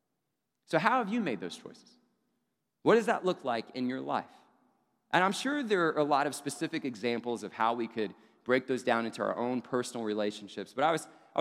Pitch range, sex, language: 115-150 Hz, male, English